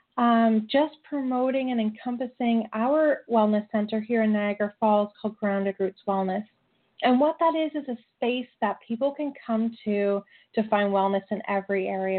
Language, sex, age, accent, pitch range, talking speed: English, female, 30-49, American, 205-255 Hz, 165 wpm